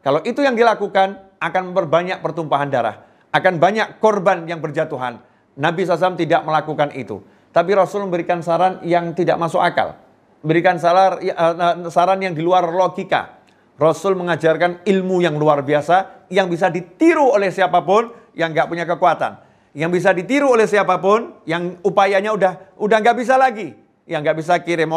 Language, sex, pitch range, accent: Indonesian, male, 170-210 Hz, native